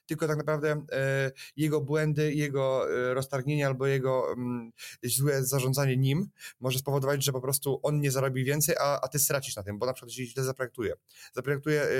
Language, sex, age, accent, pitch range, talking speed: Polish, male, 20-39, native, 125-145 Hz, 165 wpm